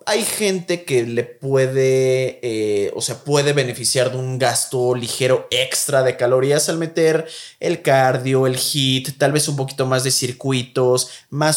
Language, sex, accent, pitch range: Spanish, male, Mexican, 120-150 Hz